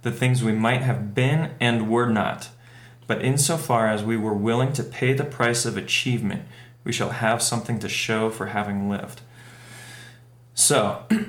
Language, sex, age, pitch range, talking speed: English, male, 20-39, 105-120 Hz, 165 wpm